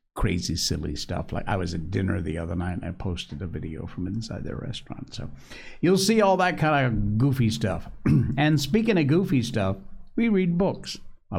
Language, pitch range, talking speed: English, 95-135 Hz, 200 wpm